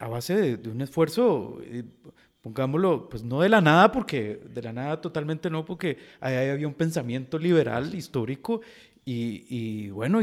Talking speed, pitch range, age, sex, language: 165 wpm, 125-175 Hz, 40-59, male, Spanish